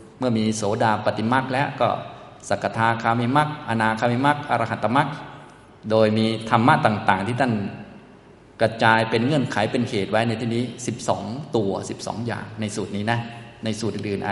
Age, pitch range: 20-39, 100-120 Hz